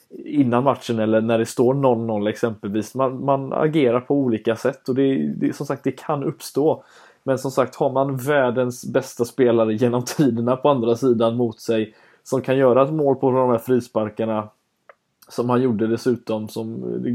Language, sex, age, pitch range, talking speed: Swedish, male, 20-39, 115-135 Hz, 180 wpm